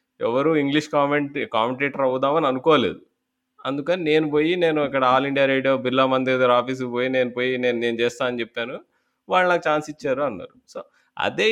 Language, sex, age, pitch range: Telugu, male, 20-39, 110-145 Hz